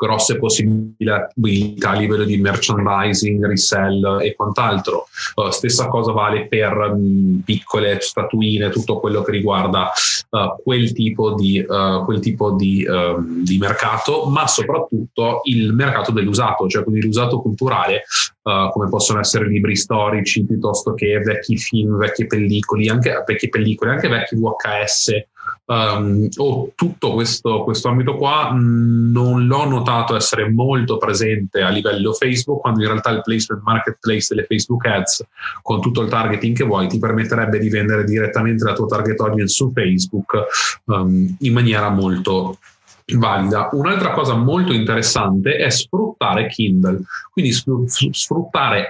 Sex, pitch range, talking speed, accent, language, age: male, 105-115 Hz, 135 wpm, native, Italian, 20-39